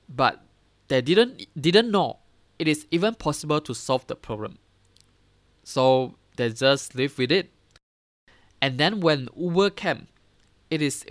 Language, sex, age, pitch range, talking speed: English, male, 20-39, 115-150 Hz, 140 wpm